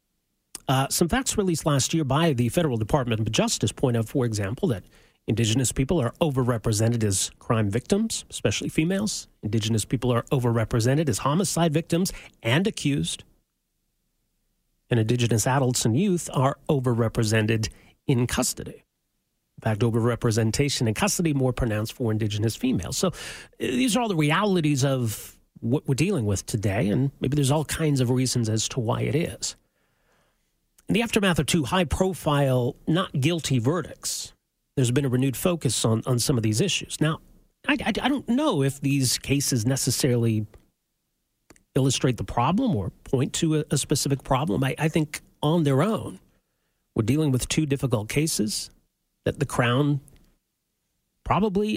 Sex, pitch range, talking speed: male, 115-160 Hz, 155 wpm